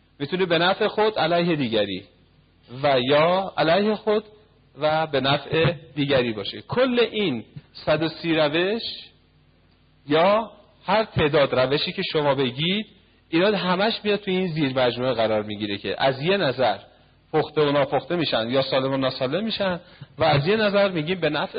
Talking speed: 155 wpm